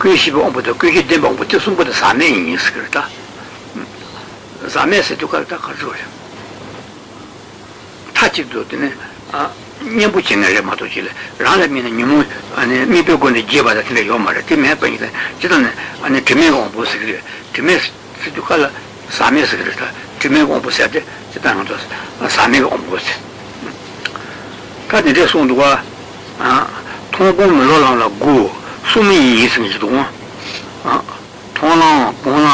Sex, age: male, 60-79